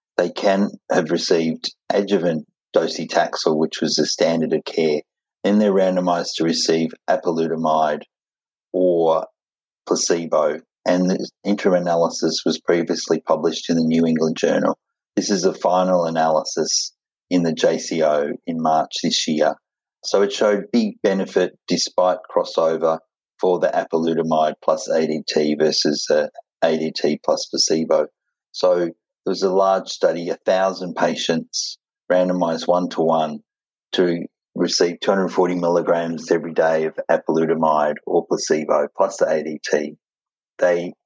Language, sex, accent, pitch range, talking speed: English, male, Australian, 80-95 Hz, 125 wpm